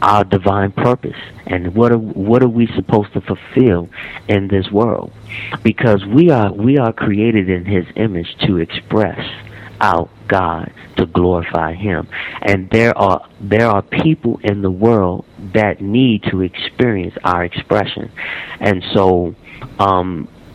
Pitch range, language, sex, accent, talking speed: 100-120 Hz, English, male, American, 145 wpm